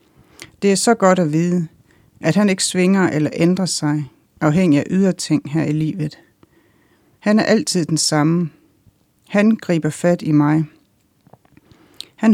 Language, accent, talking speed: Danish, native, 145 wpm